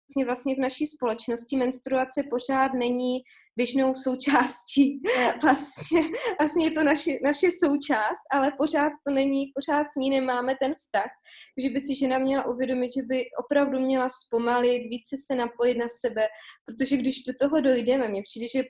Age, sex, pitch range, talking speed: 20-39, female, 240-270 Hz, 155 wpm